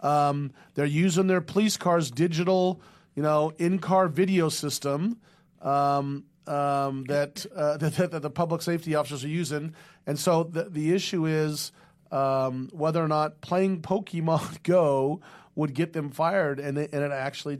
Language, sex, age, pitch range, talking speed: English, male, 40-59, 140-170 Hz, 155 wpm